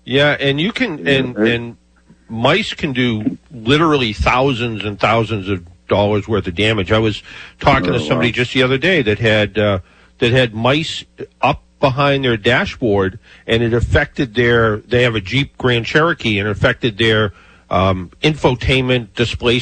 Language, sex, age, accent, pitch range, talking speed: English, male, 50-69, American, 100-125 Hz, 165 wpm